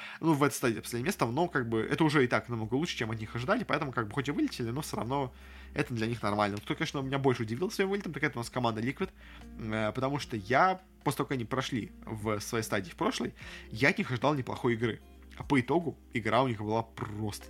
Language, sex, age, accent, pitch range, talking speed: Russian, male, 20-39, native, 115-155 Hz, 245 wpm